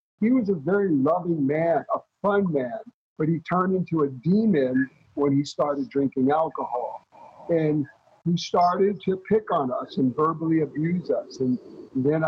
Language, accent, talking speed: English, American, 160 wpm